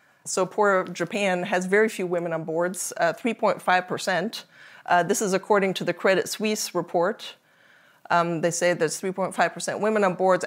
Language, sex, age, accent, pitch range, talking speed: English, female, 30-49, American, 180-215 Hz, 155 wpm